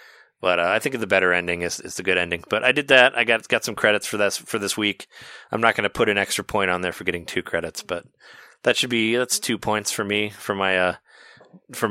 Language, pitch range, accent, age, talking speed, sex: English, 90-115 Hz, American, 20-39, 265 wpm, male